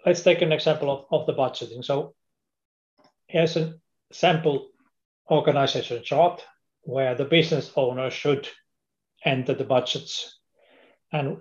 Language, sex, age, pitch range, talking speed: English, male, 30-49, 130-155 Hz, 120 wpm